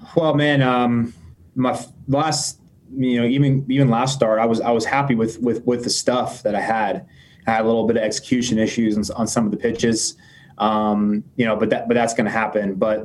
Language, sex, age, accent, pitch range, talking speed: English, male, 20-39, American, 105-120 Hz, 225 wpm